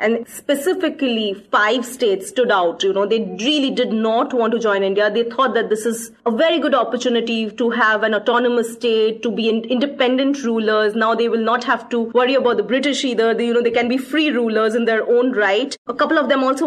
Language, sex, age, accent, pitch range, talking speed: English, female, 30-49, Indian, 225-280 Hz, 220 wpm